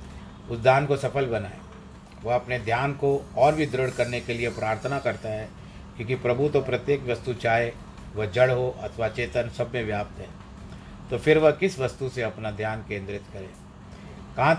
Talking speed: 180 wpm